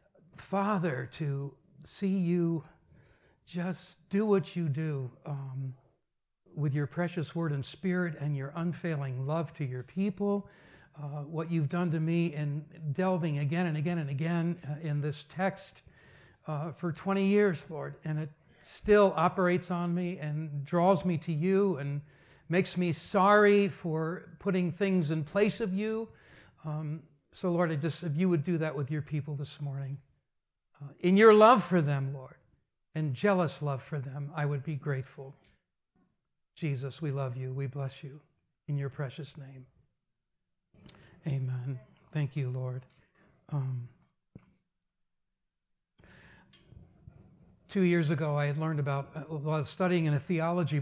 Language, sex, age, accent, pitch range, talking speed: English, male, 60-79, American, 145-175 Hz, 150 wpm